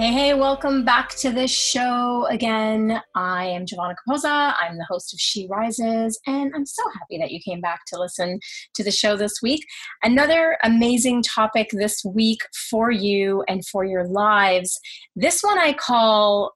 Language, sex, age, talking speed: English, female, 30-49, 175 wpm